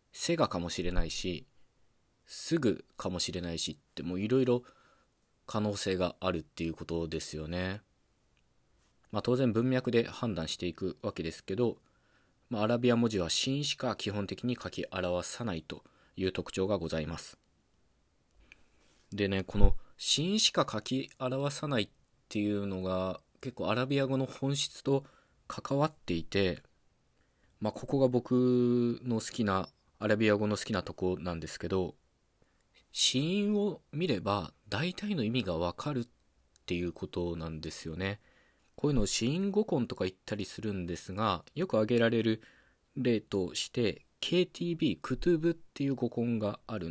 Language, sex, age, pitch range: Japanese, male, 20-39, 90-130 Hz